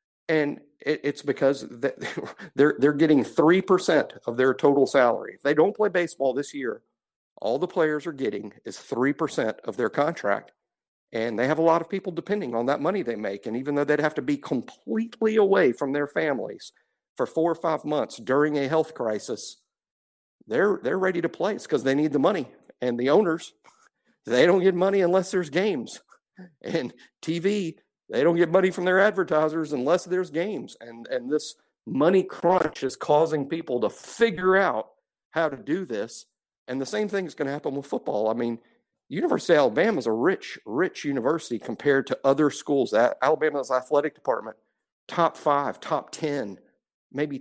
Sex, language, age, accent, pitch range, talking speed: male, English, 50-69, American, 135-180 Hz, 180 wpm